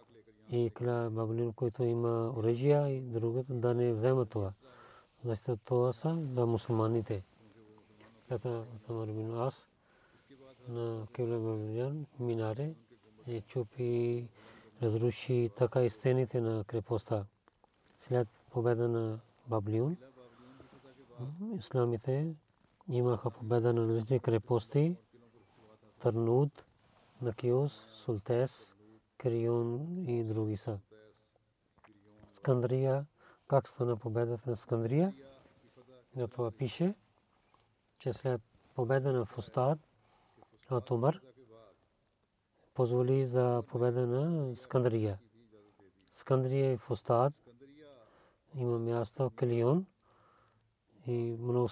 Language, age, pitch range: Bulgarian, 40-59, 115-130 Hz